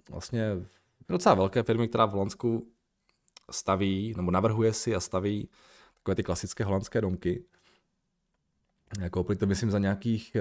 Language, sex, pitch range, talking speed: Czech, male, 95-120 Hz, 135 wpm